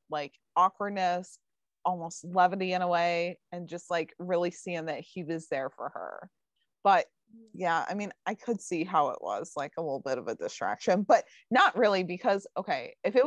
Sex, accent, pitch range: female, American, 170-210 Hz